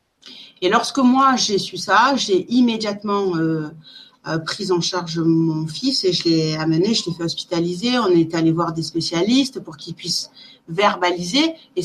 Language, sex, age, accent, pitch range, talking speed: French, female, 40-59, French, 175-235 Hz, 170 wpm